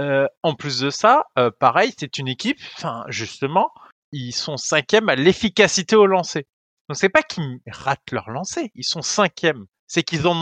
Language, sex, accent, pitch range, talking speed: French, male, French, 125-175 Hz, 180 wpm